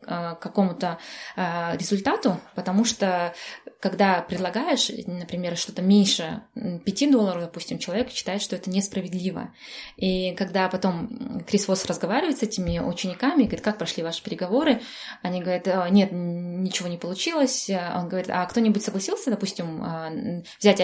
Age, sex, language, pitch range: 20-39, female, Russian, 180-225 Hz